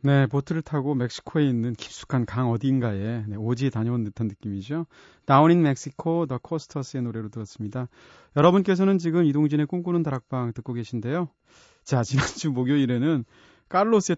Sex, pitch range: male, 110-150 Hz